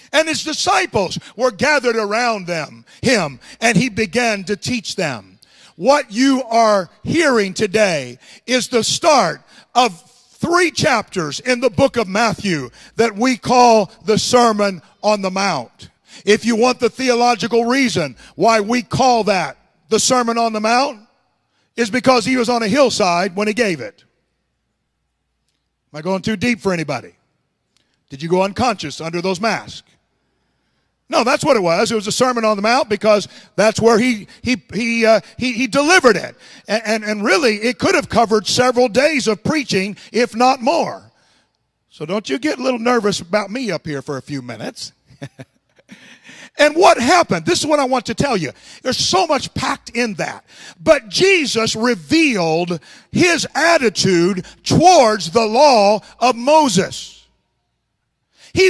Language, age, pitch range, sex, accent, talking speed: English, 50-69, 190-255 Hz, male, American, 165 wpm